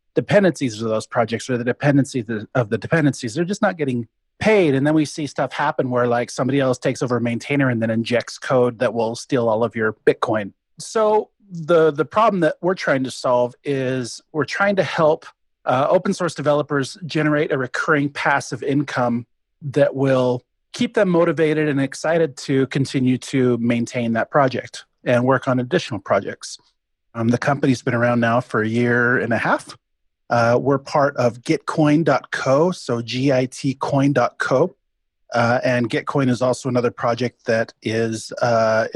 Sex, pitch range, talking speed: male, 120-150 Hz, 170 wpm